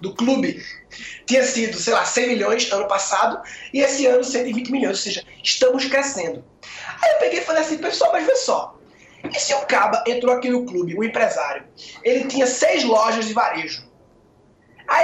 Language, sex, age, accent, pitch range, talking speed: English, male, 20-39, Brazilian, 245-295 Hz, 190 wpm